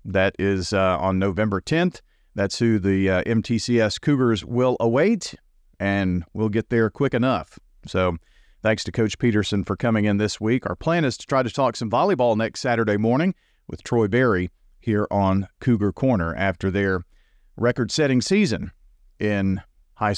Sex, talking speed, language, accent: male, 165 wpm, English, American